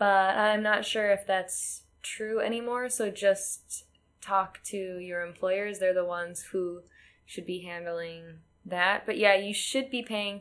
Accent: American